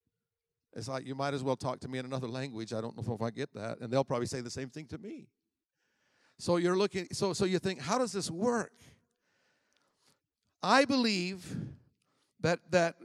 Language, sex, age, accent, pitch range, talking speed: English, male, 50-69, American, 150-195 Hz, 200 wpm